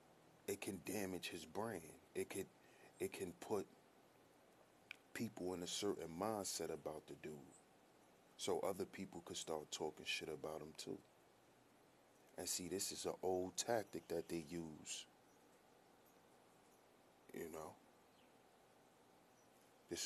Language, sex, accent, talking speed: English, male, American, 125 wpm